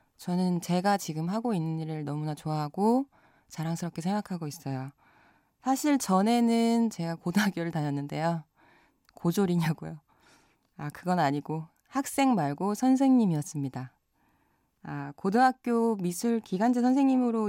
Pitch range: 160-230 Hz